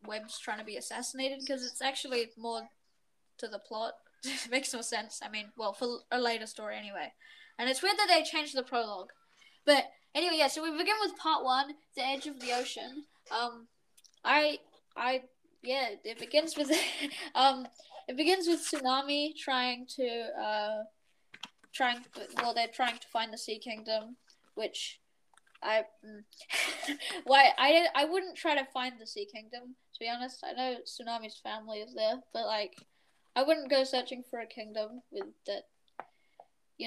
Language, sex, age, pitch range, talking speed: English, female, 10-29, 230-300 Hz, 170 wpm